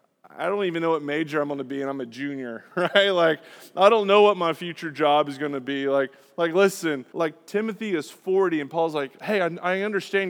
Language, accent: English, American